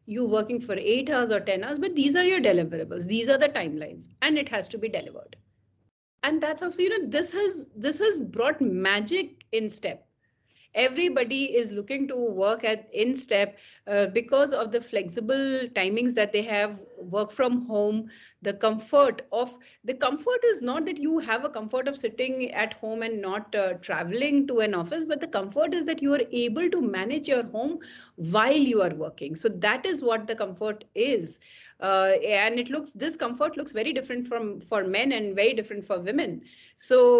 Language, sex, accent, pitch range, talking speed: English, female, Indian, 210-285 Hz, 195 wpm